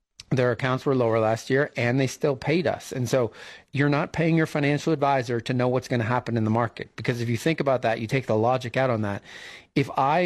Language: English